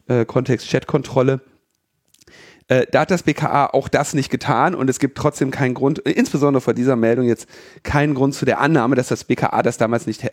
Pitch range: 115-145 Hz